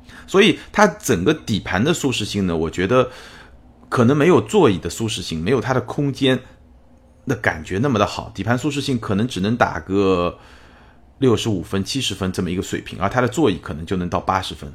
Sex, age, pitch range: male, 30-49, 85-115 Hz